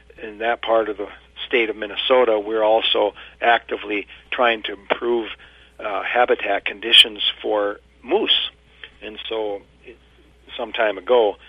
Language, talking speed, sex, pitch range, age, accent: English, 130 wpm, male, 100-115 Hz, 50-69, American